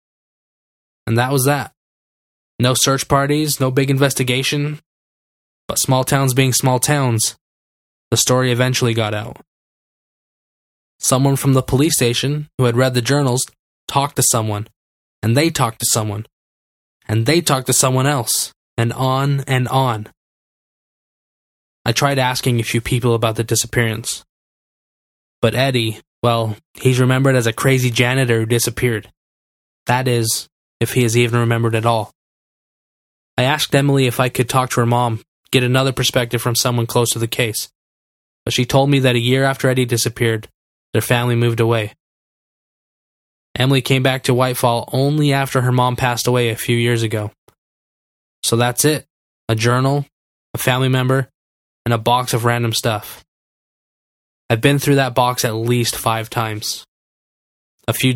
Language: English